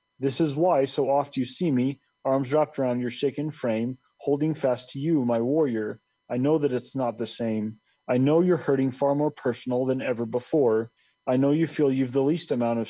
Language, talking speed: English, 215 wpm